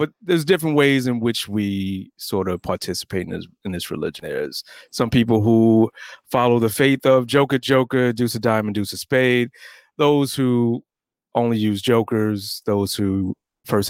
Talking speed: 170 wpm